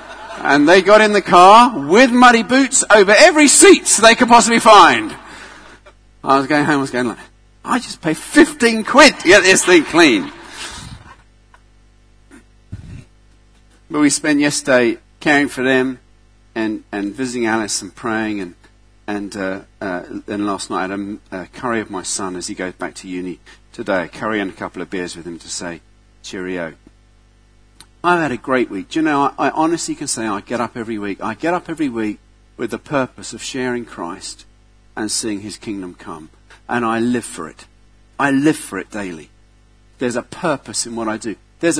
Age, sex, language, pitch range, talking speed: 50-69, male, English, 110-180 Hz, 190 wpm